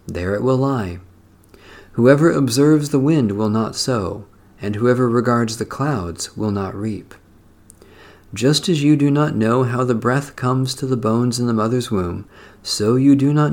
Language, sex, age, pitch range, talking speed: English, male, 40-59, 100-130 Hz, 175 wpm